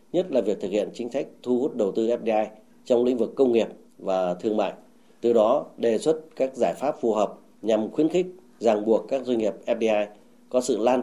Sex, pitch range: male, 105-130 Hz